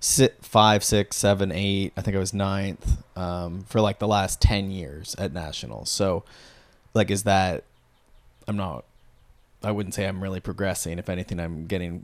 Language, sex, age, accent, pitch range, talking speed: English, male, 20-39, American, 90-110 Hz, 175 wpm